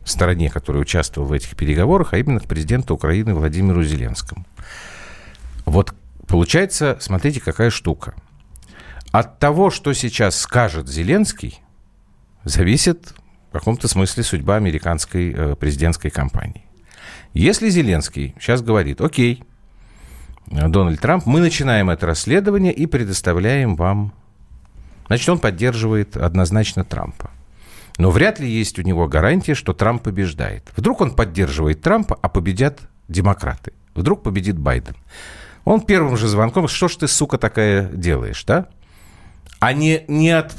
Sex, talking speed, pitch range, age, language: male, 130 wpm, 85-130 Hz, 50-69, Russian